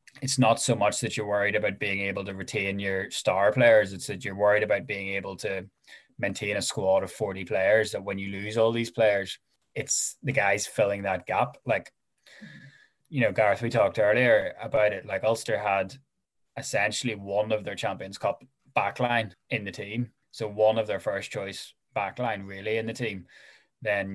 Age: 10-29